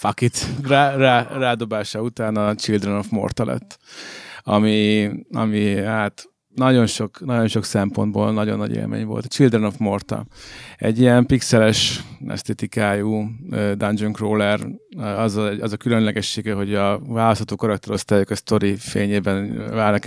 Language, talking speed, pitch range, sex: Hungarian, 130 wpm, 100-115 Hz, male